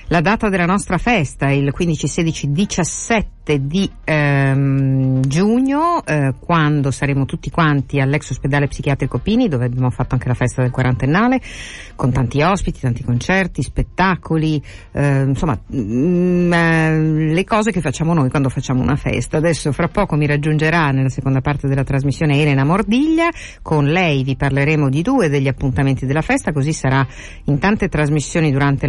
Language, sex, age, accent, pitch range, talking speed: Italian, female, 50-69, native, 135-170 Hz, 160 wpm